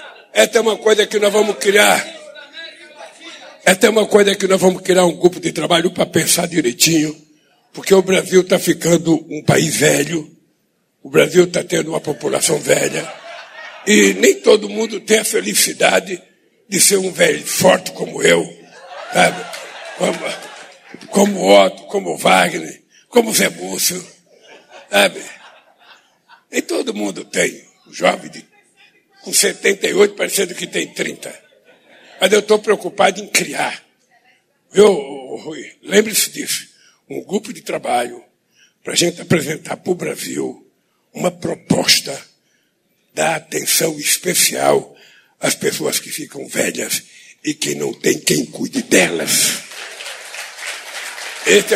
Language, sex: Portuguese, male